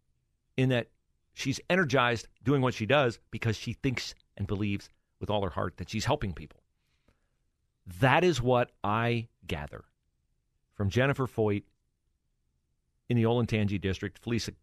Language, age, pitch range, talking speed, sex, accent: English, 40-59, 95-130 Hz, 145 wpm, male, American